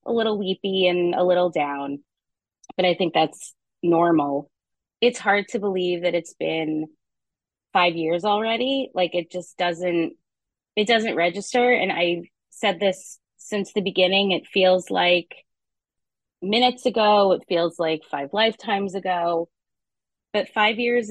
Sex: female